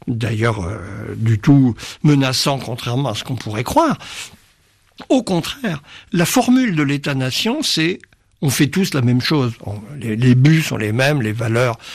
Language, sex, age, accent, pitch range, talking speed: French, male, 60-79, French, 125-180 Hz, 165 wpm